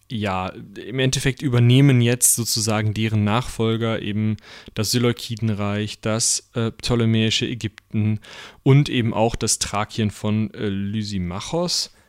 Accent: German